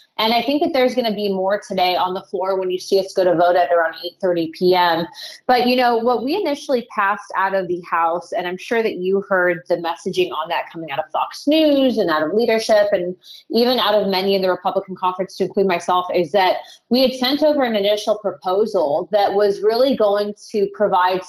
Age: 20-39